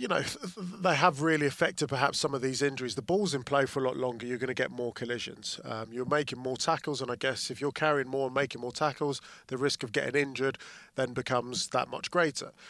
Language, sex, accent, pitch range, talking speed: English, male, British, 125-145 Hz, 240 wpm